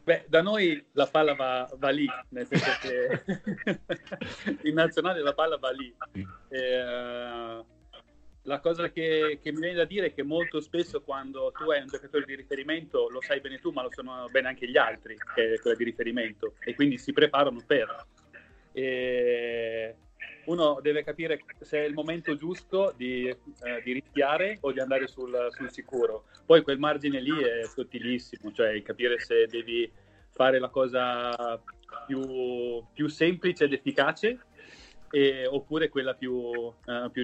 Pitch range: 125-170 Hz